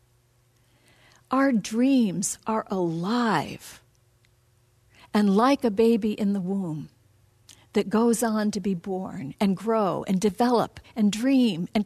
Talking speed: 120 wpm